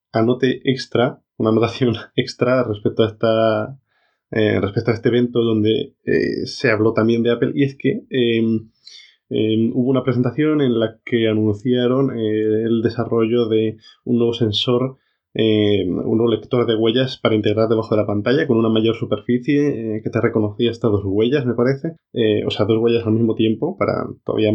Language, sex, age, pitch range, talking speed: Spanish, male, 20-39, 110-125 Hz, 180 wpm